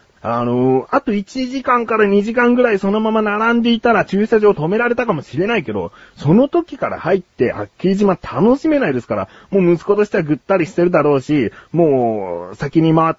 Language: Japanese